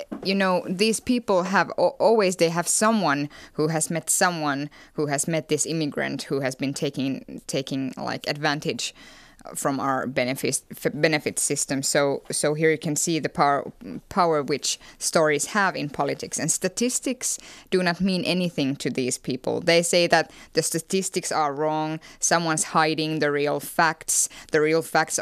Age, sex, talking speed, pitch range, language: 20-39, female, 160 wpm, 155-195 Hz, Finnish